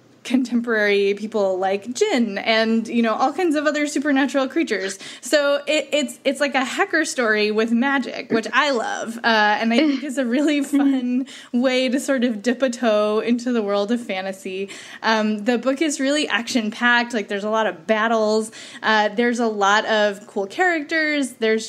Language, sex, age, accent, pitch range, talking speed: English, female, 10-29, American, 210-265 Hz, 185 wpm